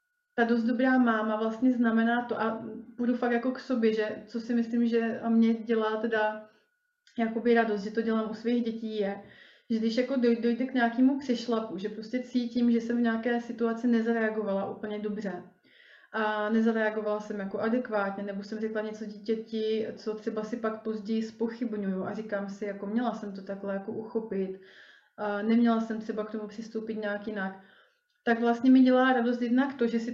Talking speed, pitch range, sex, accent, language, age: 185 wpm, 210-235 Hz, female, native, Czech, 30-49